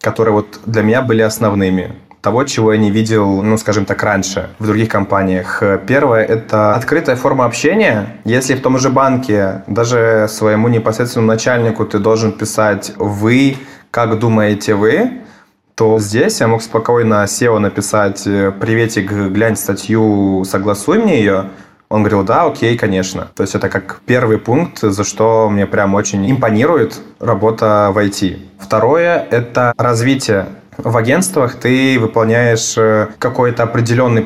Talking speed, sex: 145 wpm, male